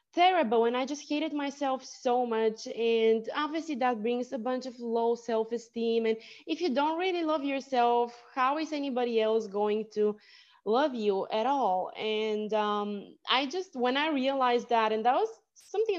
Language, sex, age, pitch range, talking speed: English, female, 20-39, 220-270 Hz, 175 wpm